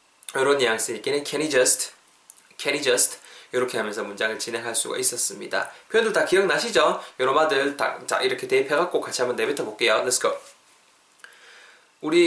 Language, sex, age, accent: Korean, male, 20-39, native